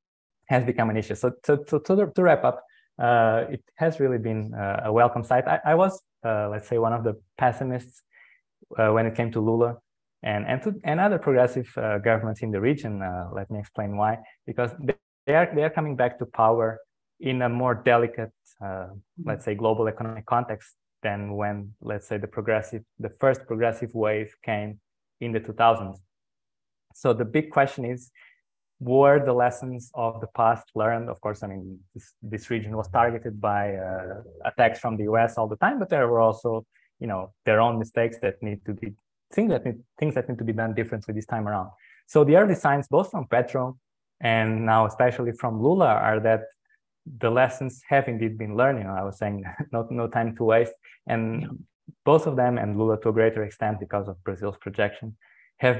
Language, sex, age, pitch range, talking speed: English, male, 20-39, 105-125 Hz, 195 wpm